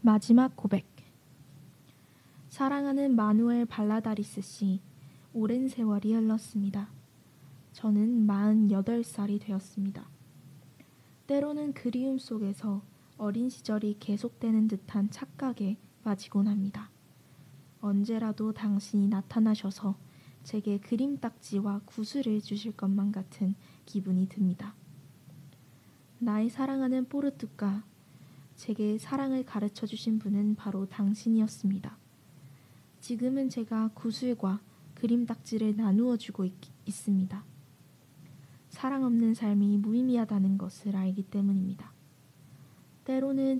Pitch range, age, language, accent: 165-225 Hz, 20-39, Korean, native